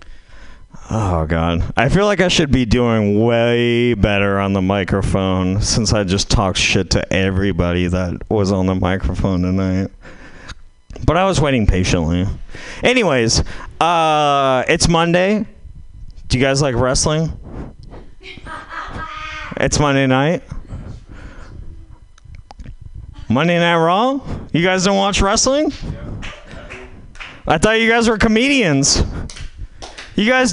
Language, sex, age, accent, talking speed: English, male, 30-49, American, 120 wpm